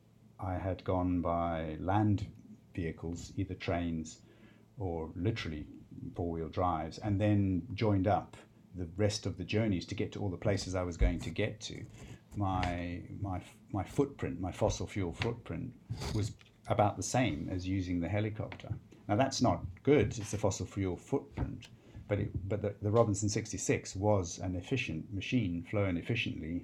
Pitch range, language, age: 95-110 Hz, English, 50-69